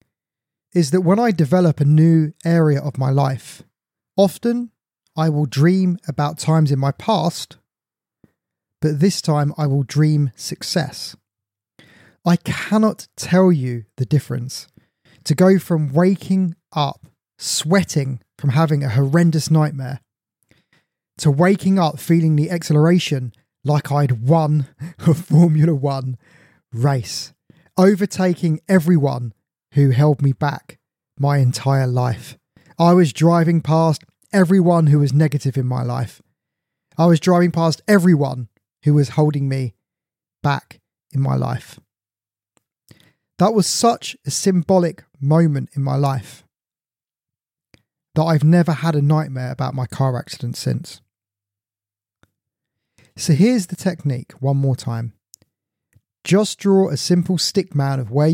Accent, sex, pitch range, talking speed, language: British, male, 130-170 Hz, 130 wpm, English